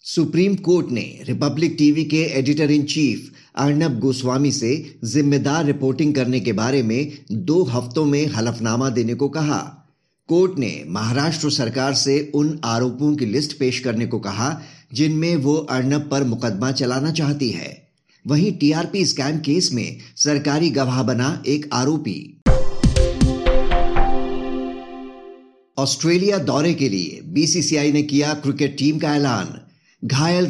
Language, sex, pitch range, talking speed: Hindi, male, 130-155 Hz, 135 wpm